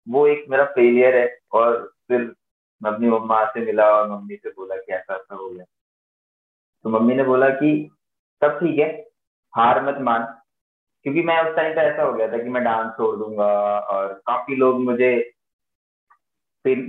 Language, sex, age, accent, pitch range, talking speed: Hindi, male, 20-39, native, 105-140 Hz, 165 wpm